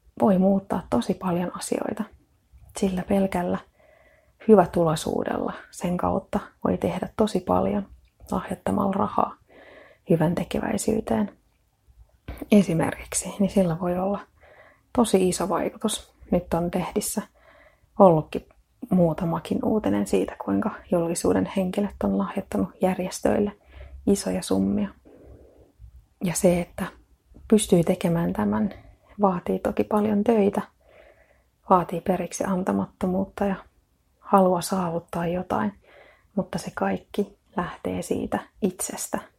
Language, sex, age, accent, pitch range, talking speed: Finnish, female, 30-49, native, 175-215 Hz, 100 wpm